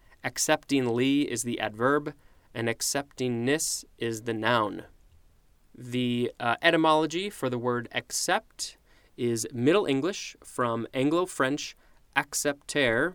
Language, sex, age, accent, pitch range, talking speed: English, male, 20-39, American, 115-150 Hz, 100 wpm